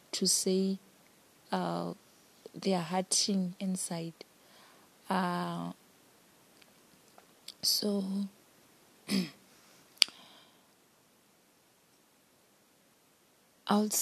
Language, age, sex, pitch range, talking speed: English, 20-39, female, 185-210 Hz, 45 wpm